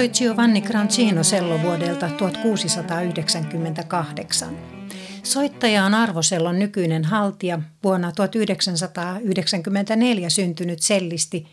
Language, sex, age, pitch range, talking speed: Finnish, female, 60-79, 175-210 Hz, 70 wpm